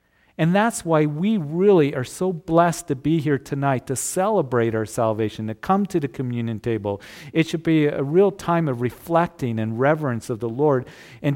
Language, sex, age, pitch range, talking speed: English, male, 50-69, 125-170 Hz, 190 wpm